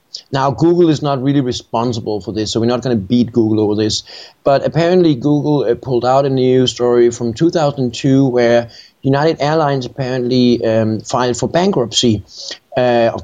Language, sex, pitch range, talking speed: English, male, 125-165 Hz, 170 wpm